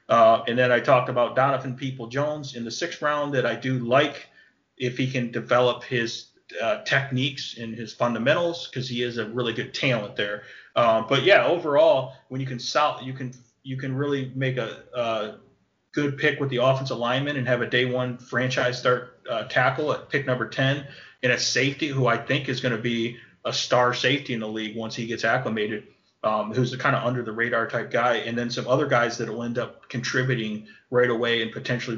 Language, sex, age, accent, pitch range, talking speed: English, male, 30-49, American, 120-135 Hz, 215 wpm